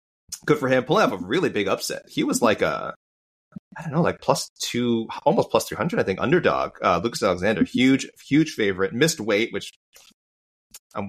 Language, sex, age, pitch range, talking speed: English, male, 30-49, 95-120 Hz, 190 wpm